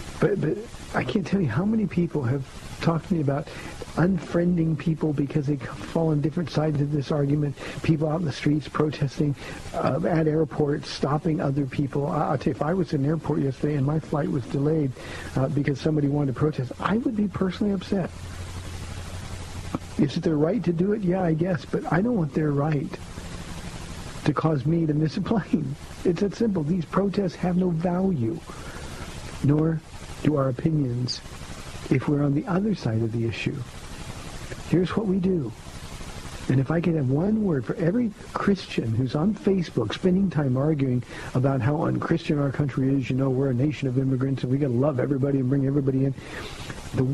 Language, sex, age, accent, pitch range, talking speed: English, male, 50-69, American, 135-175 Hz, 190 wpm